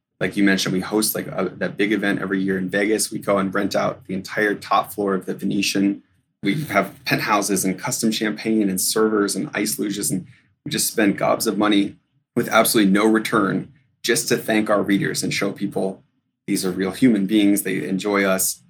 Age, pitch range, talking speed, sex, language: 20-39, 95-110 Hz, 200 wpm, male, English